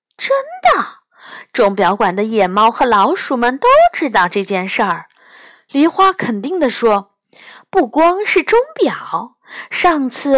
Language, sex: Chinese, female